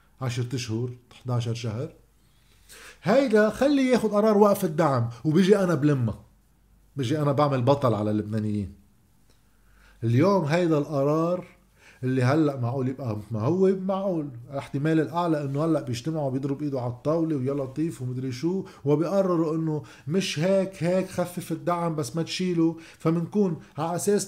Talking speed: 140 wpm